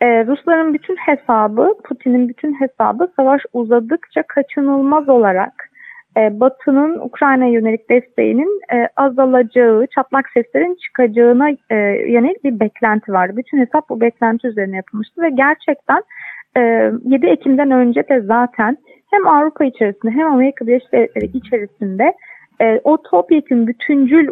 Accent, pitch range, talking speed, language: native, 235-305 Hz, 130 wpm, Turkish